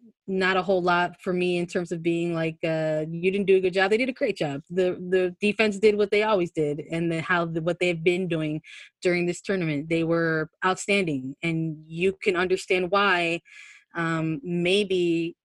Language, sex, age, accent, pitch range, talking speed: English, female, 20-39, American, 170-215 Hz, 200 wpm